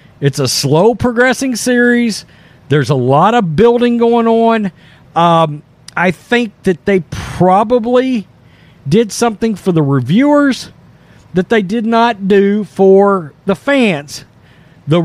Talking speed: 125 wpm